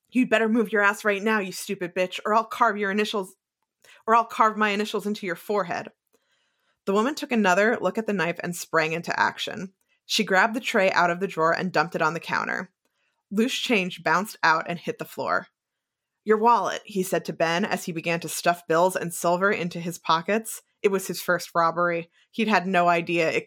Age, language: 20-39, English